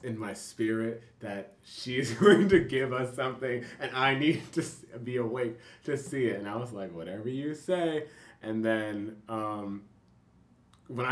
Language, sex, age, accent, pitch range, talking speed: English, male, 20-39, American, 105-125 Hz, 160 wpm